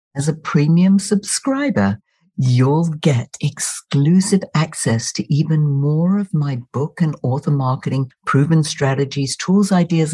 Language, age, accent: English, 60-79, British